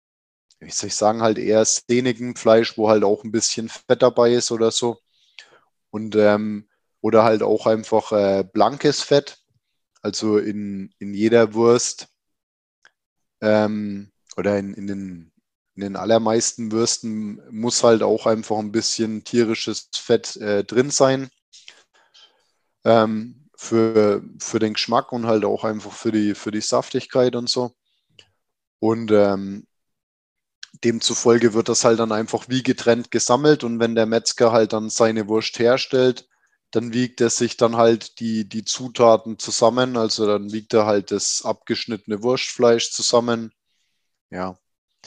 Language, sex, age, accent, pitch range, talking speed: German, male, 20-39, German, 105-120 Hz, 145 wpm